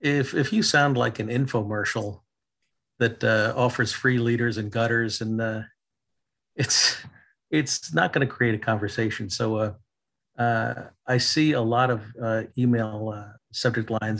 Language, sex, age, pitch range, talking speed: English, male, 50-69, 115-140 Hz, 155 wpm